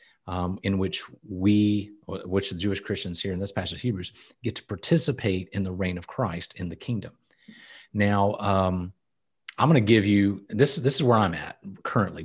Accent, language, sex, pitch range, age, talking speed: American, English, male, 95-110 Hz, 40-59, 190 wpm